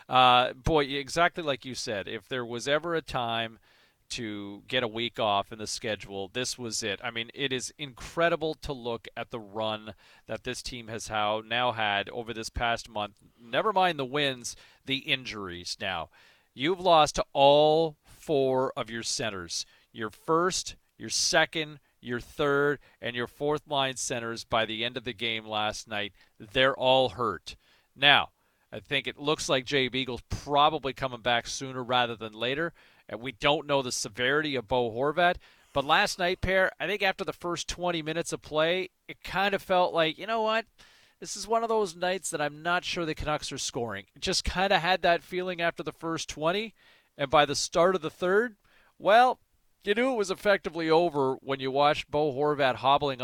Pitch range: 120-165 Hz